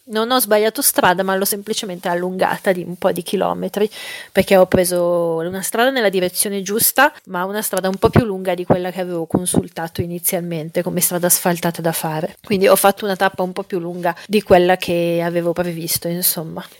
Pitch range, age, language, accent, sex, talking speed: 180-205 Hz, 30-49, Italian, native, female, 195 wpm